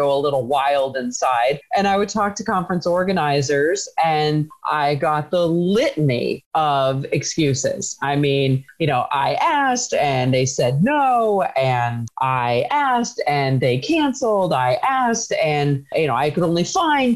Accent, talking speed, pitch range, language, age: American, 155 wpm, 145-190 Hz, English, 30-49